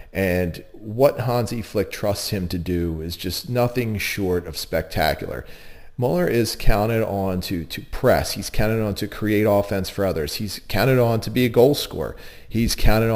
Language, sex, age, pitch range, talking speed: English, male, 40-59, 90-115 Hz, 180 wpm